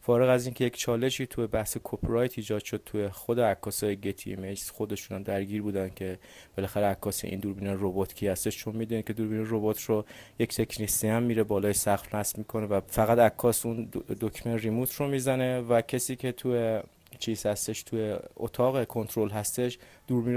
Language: Persian